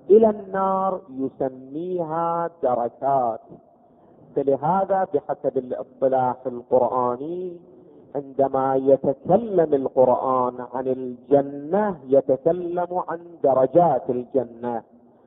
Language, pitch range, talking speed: Arabic, 135-180 Hz, 65 wpm